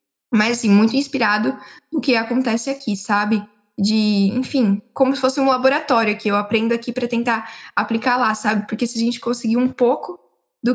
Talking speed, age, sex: 185 wpm, 10-29, female